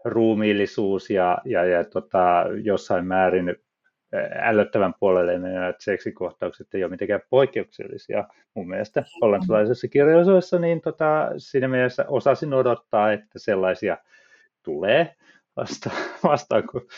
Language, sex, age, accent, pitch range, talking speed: Finnish, male, 30-49, native, 100-140 Hz, 110 wpm